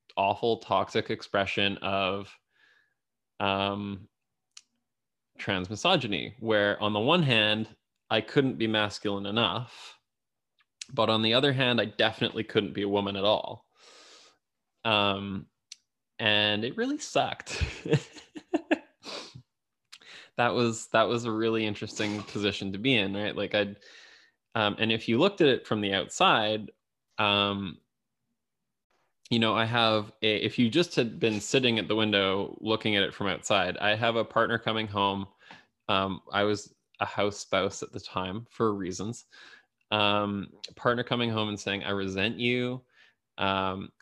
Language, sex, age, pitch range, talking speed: English, male, 20-39, 100-115 Hz, 140 wpm